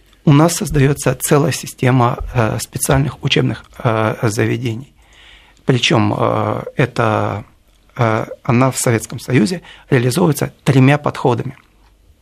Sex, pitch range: male, 115-145 Hz